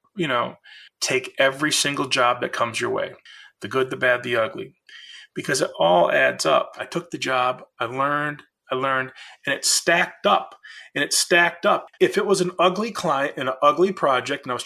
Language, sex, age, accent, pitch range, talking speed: English, male, 30-49, American, 135-210 Hz, 205 wpm